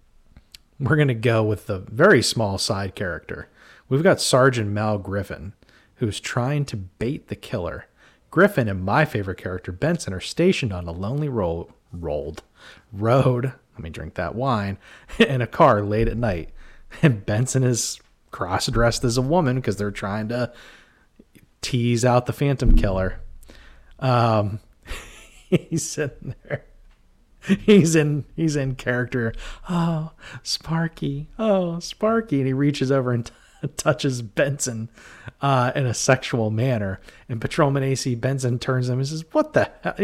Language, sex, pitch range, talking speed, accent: English, male, 110-145 Hz, 150 wpm, American